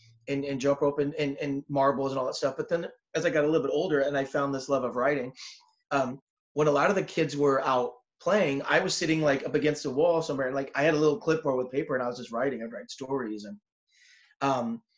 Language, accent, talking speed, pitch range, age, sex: English, American, 260 wpm, 135-170 Hz, 30-49, male